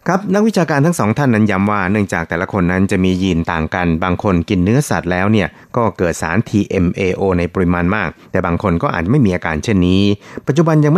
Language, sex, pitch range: Thai, male, 90-110 Hz